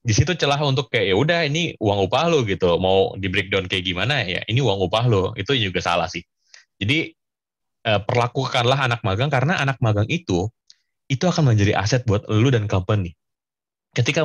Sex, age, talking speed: male, 20-39, 175 wpm